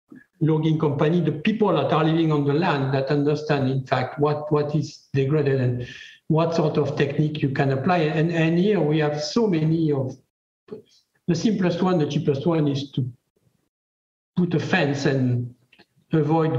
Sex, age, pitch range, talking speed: male, 60-79, 145-165 Hz, 170 wpm